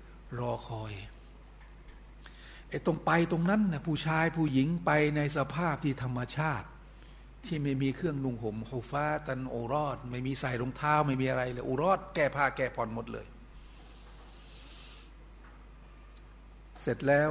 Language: Thai